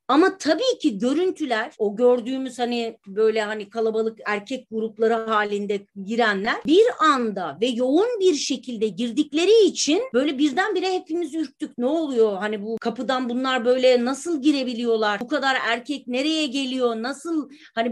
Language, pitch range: Turkish, 230-320 Hz